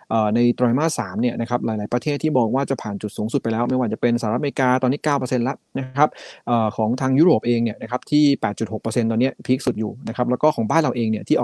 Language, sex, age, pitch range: Thai, male, 20-39, 115-140 Hz